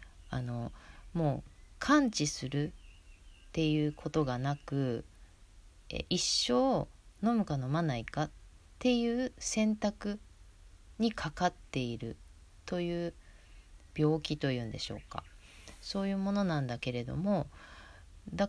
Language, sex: Japanese, female